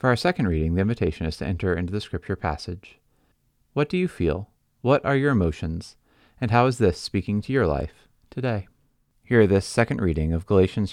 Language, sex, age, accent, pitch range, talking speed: English, male, 30-49, American, 90-125 Hz, 200 wpm